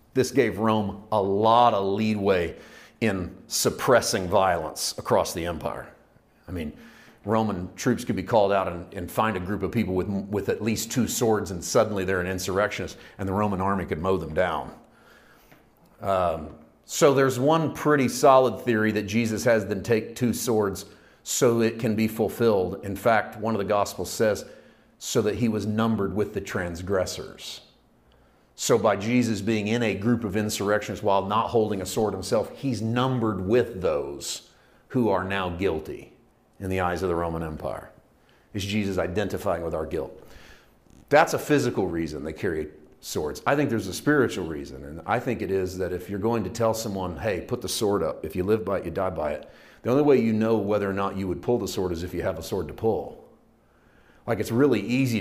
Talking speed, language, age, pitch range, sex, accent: 195 wpm, English, 40-59, 95-115 Hz, male, American